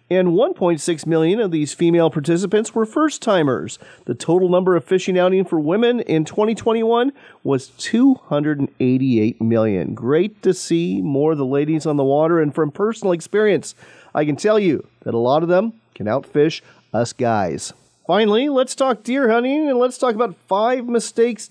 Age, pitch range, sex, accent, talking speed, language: 40-59, 155-220 Hz, male, American, 165 wpm, English